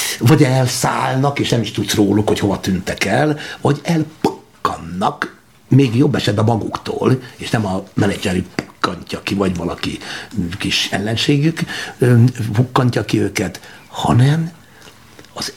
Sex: male